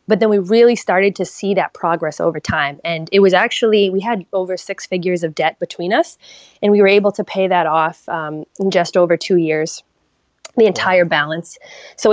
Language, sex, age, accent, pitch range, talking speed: English, female, 20-39, American, 170-215 Hz, 210 wpm